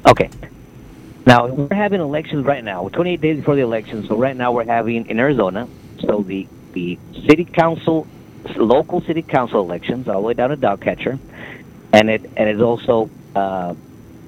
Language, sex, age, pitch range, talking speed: English, male, 50-69, 110-140 Hz, 170 wpm